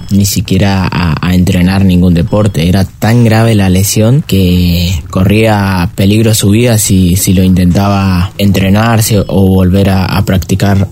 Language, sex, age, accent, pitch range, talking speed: Spanish, male, 20-39, Argentinian, 95-115 Hz, 155 wpm